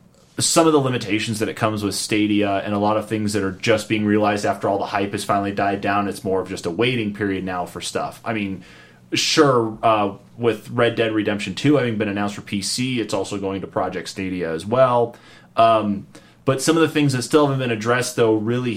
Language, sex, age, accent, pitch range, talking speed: English, male, 30-49, American, 100-120 Hz, 230 wpm